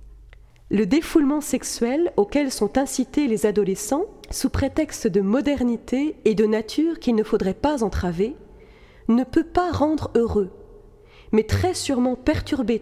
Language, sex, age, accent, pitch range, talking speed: French, female, 40-59, French, 210-270 Hz, 135 wpm